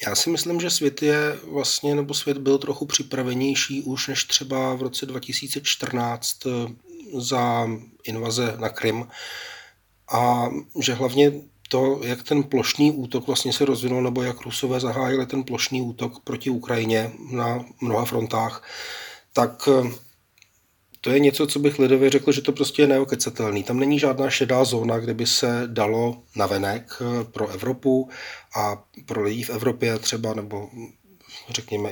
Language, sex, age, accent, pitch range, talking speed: Czech, male, 30-49, native, 110-135 Hz, 140 wpm